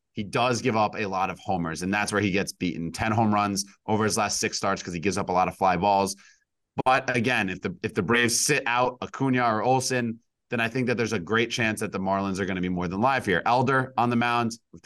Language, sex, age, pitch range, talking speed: English, male, 30-49, 100-125 Hz, 270 wpm